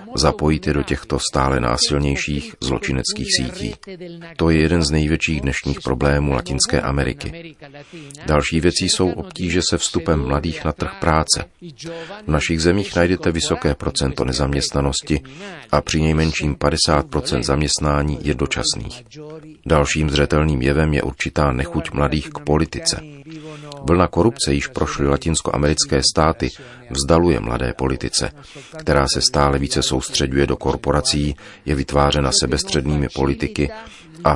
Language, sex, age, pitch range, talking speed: Czech, male, 40-59, 70-85 Hz, 125 wpm